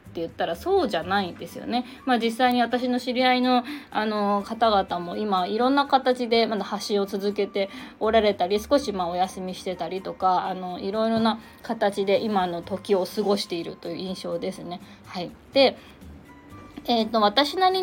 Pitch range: 195-260 Hz